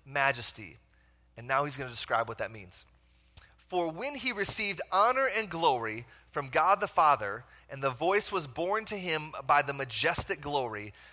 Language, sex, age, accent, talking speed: English, male, 30-49, American, 175 wpm